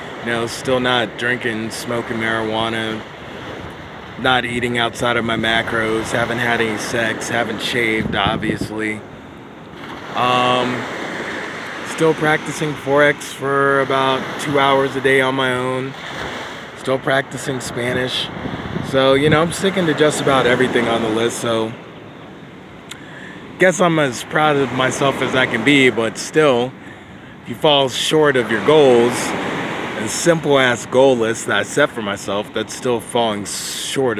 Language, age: English, 20-39